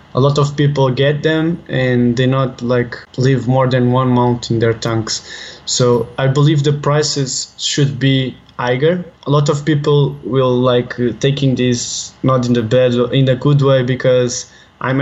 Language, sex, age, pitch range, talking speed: English, male, 20-39, 120-140 Hz, 175 wpm